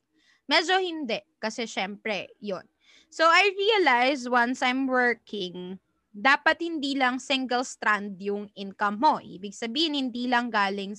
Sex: female